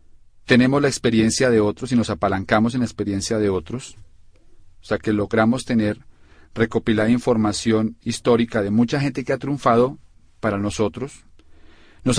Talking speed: 150 wpm